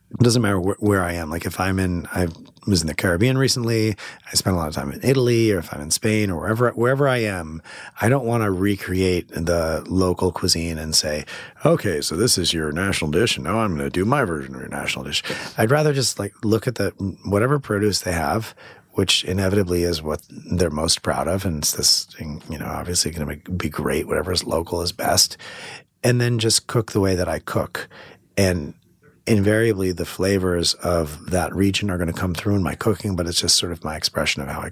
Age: 30-49